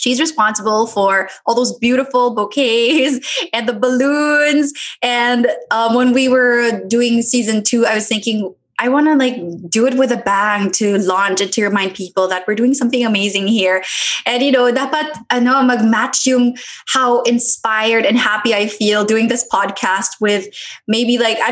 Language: English